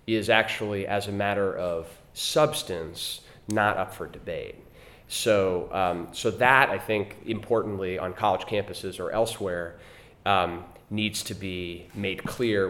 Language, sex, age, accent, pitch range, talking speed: English, male, 30-49, American, 90-115 Hz, 135 wpm